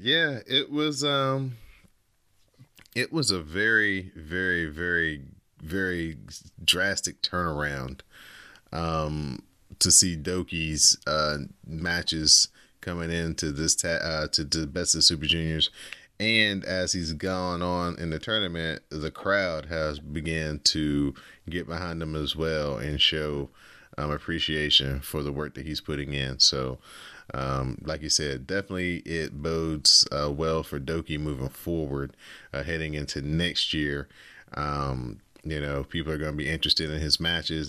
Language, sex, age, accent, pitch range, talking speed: English, male, 30-49, American, 75-85 Hz, 145 wpm